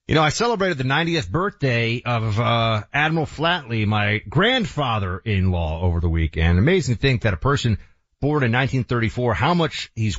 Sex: male